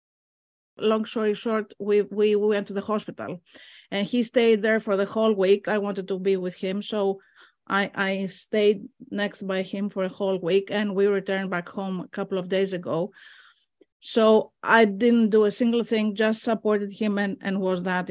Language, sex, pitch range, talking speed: Greek, female, 190-220 Hz, 195 wpm